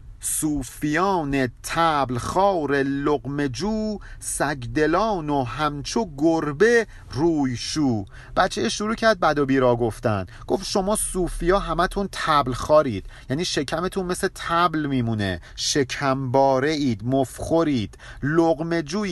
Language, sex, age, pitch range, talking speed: Persian, male, 50-69, 130-185 Hz, 95 wpm